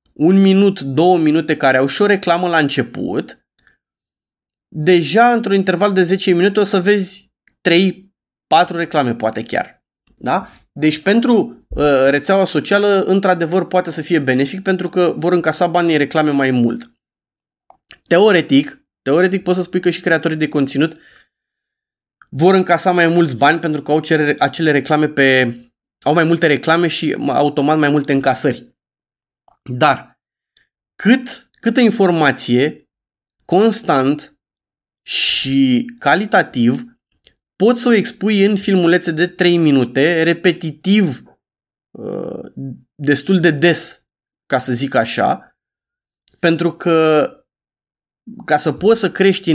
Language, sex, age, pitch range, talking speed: Romanian, male, 20-39, 145-195 Hz, 125 wpm